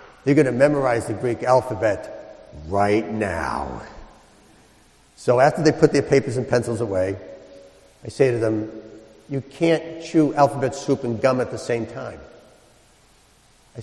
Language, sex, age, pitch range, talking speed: English, male, 50-69, 110-155 Hz, 150 wpm